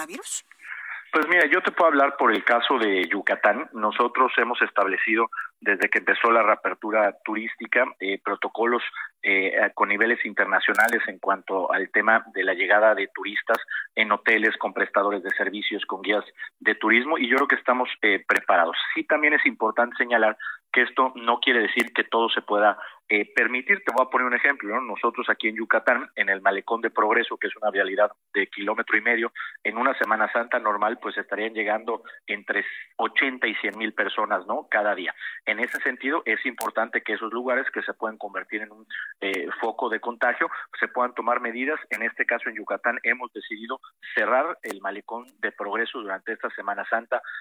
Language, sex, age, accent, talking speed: Spanish, male, 40-59, Mexican, 185 wpm